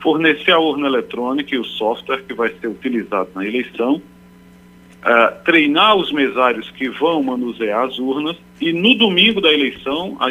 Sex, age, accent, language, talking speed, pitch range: male, 40-59, Brazilian, Portuguese, 165 wpm, 100-150 Hz